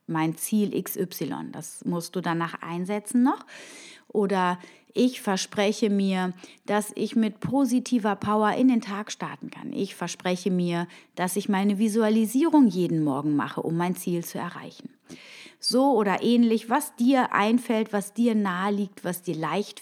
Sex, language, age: female, German, 30-49